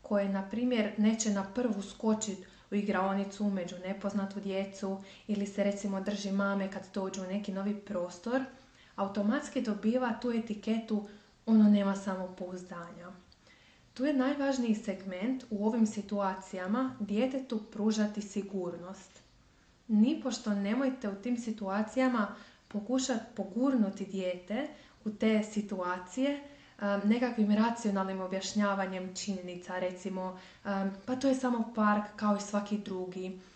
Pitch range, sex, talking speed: 195-230 Hz, female, 115 wpm